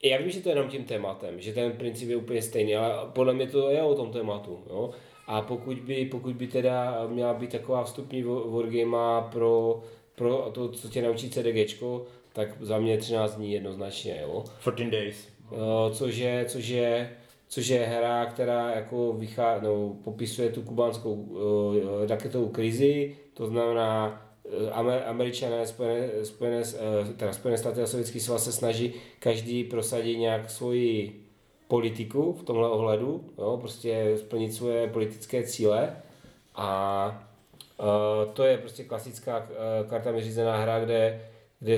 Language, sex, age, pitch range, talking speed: Czech, male, 30-49, 110-120 Hz, 140 wpm